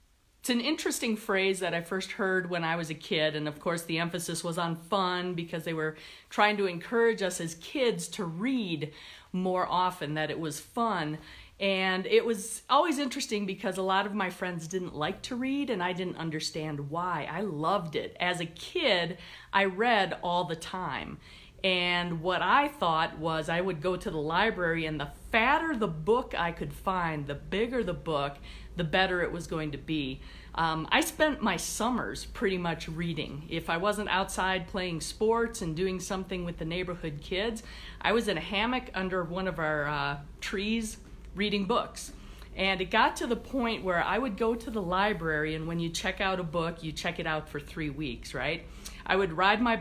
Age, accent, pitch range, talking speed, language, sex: 40-59, American, 165-210 Hz, 200 wpm, English, female